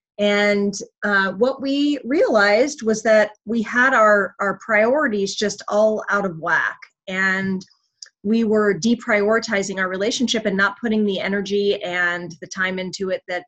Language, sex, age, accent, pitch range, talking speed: English, female, 30-49, American, 185-220 Hz, 150 wpm